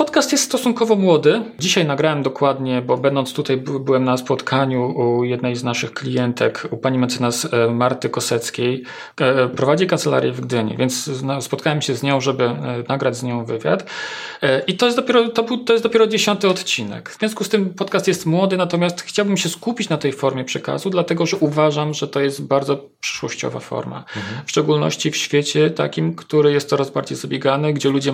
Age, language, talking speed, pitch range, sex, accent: 40-59, Polish, 170 wpm, 130-165 Hz, male, native